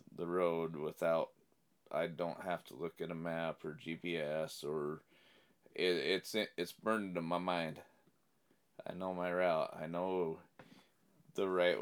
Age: 30-49